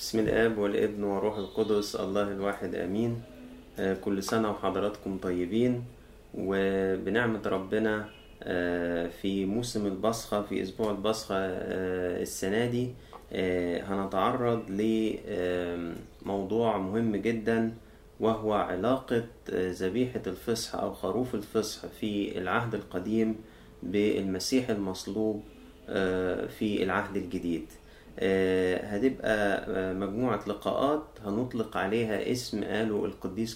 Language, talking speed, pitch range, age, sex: Arabic, 90 wpm, 95-115 Hz, 30-49, male